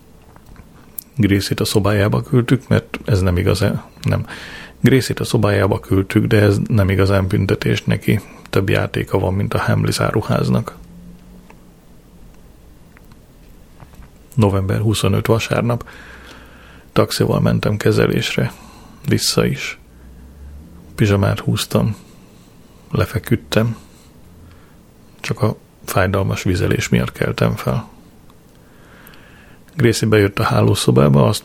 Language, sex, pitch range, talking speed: Hungarian, male, 90-110 Hz, 95 wpm